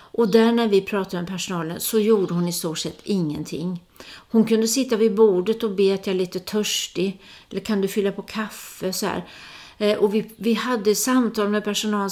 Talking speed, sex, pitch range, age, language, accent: 205 wpm, female, 185-230 Hz, 40-59, Swedish, native